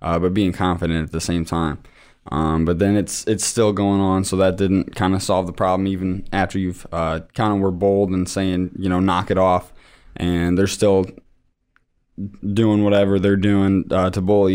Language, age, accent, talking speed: English, 20-39, American, 200 wpm